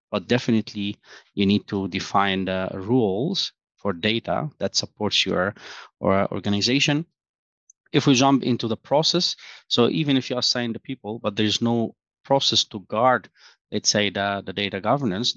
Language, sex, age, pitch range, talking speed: English, male, 30-49, 100-125 Hz, 150 wpm